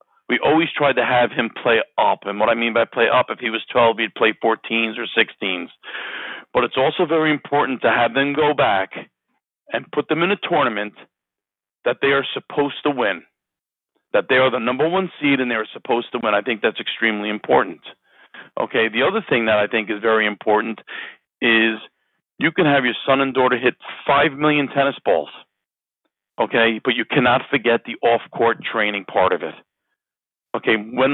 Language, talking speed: English, 195 wpm